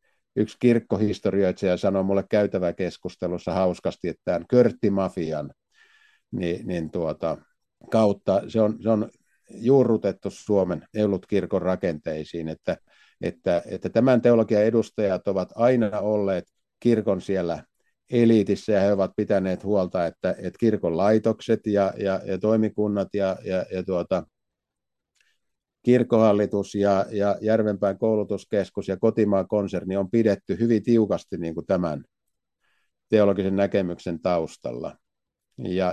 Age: 50-69